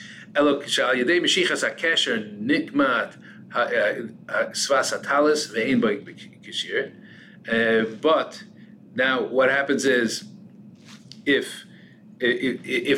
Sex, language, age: male, English, 40-59